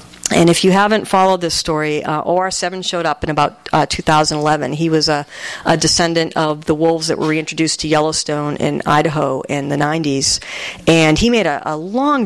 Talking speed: 190 wpm